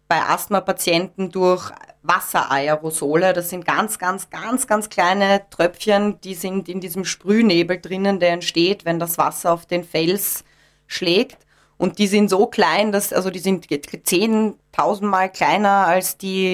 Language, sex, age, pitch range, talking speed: German, female, 20-39, 170-200 Hz, 150 wpm